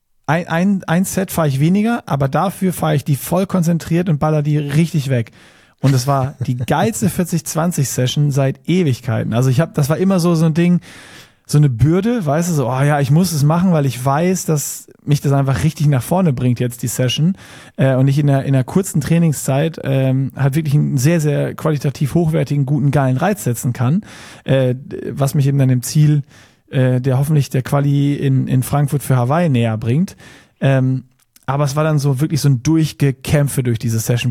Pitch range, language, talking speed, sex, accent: 135-160 Hz, German, 205 wpm, male, German